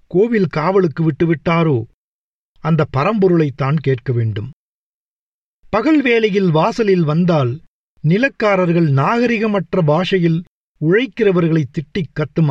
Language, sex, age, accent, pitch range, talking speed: Tamil, male, 50-69, native, 140-195 Hz, 80 wpm